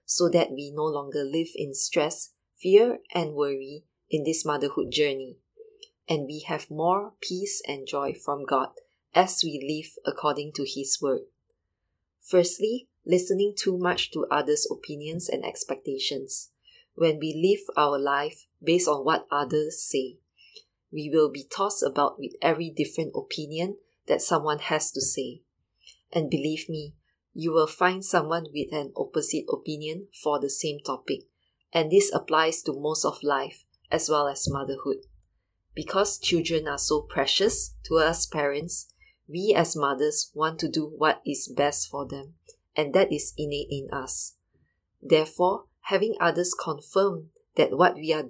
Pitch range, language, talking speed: 145-185 Hz, English, 155 wpm